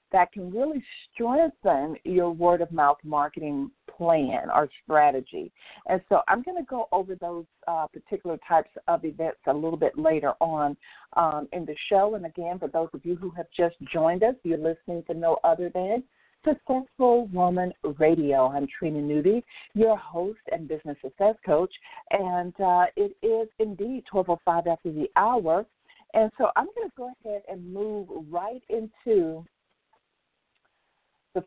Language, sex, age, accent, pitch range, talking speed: English, female, 50-69, American, 160-225 Hz, 155 wpm